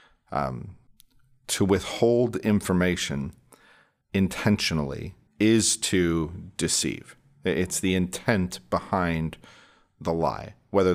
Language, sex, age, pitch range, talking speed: English, male, 40-59, 85-100 Hz, 80 wpm